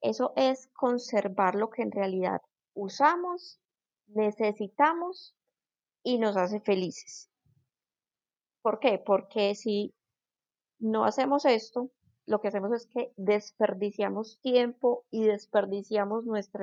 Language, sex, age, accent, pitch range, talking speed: Spanish, female, 20-39, Colombian, 195-245 Hz, 110 wpm